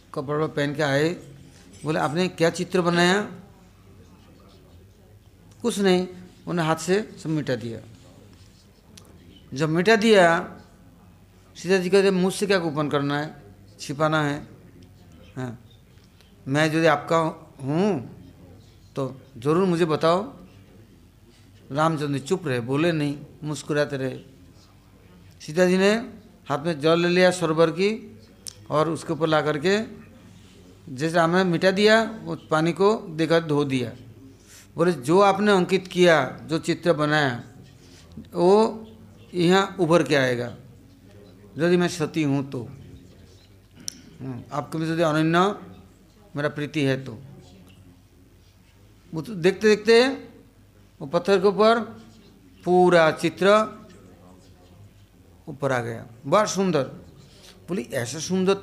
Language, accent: English, Indian